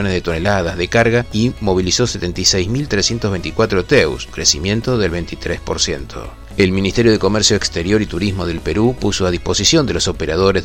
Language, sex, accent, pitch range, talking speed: Spanish, male, Argentinian, 95-115 Hz, 145 wpm